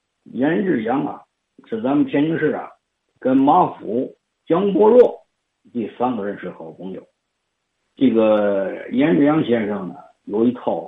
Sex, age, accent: male, 50-69, native